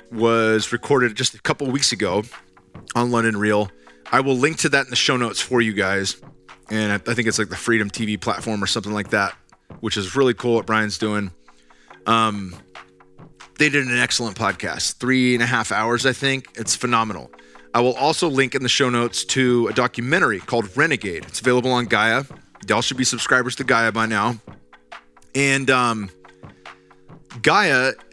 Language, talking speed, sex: English, 185 wpm, male